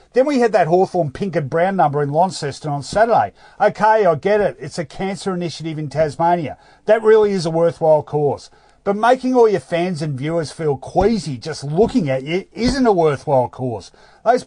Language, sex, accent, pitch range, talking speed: English, male, Australian, 145-205 Hz, 195 wpm